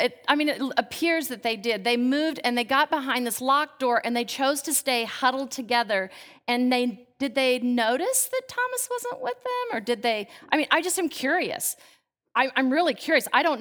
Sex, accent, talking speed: female, American, 215 wpm